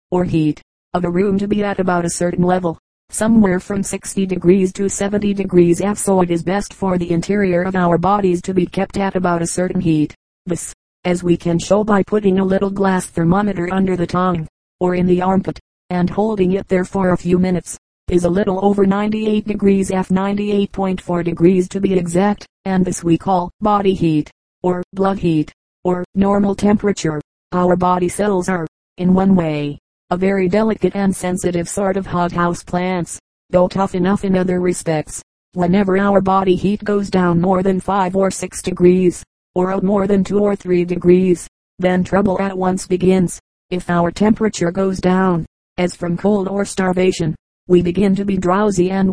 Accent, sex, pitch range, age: American, female, 175-195 Hz, 40-59